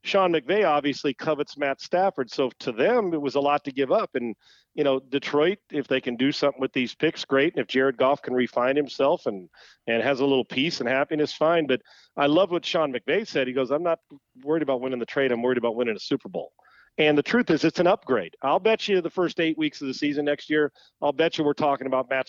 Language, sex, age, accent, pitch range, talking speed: English, male, 40-59, American, 135-160 Hz, 255 wpm